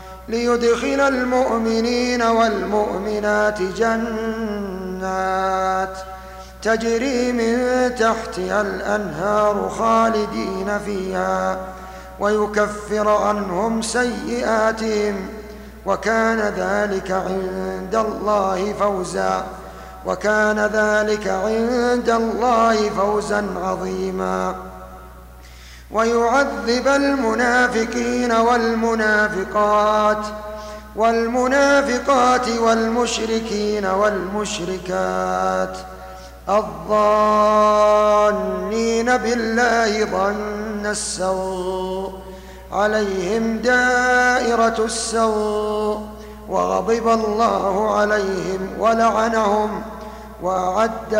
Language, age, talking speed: Arabic, 50-69, 50 wpm